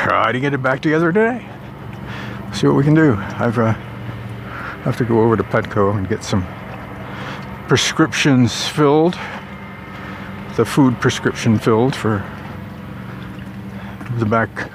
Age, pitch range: 50-69, 105-125 Hz